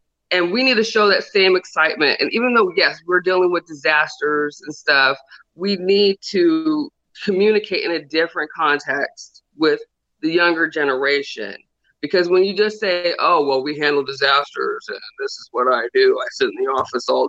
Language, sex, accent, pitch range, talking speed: English, female, American, 160-220 Hz, 180 wpm